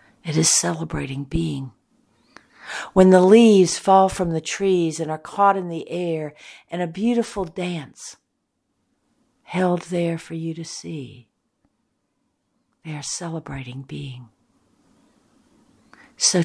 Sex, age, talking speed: female, 60-79, 115 wpm